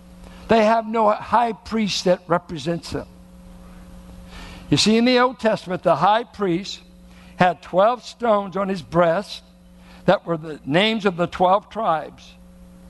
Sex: male